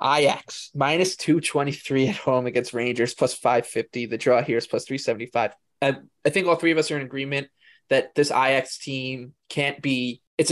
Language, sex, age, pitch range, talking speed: English, male, 20-39, 125-155 Hz, 185 wpm